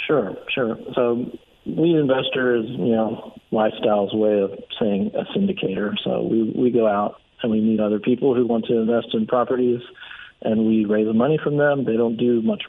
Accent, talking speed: American, 195 wpm